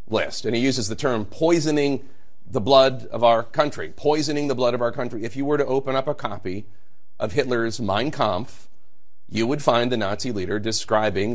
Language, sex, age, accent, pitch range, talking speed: English, male, 40-59, American, 105-135 Hz, 190 wpm